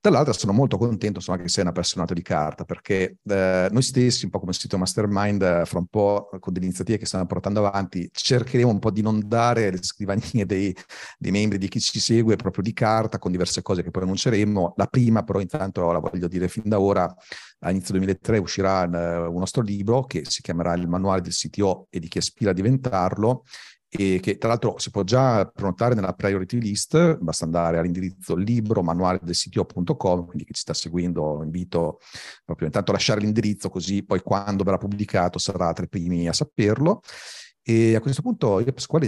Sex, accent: male, native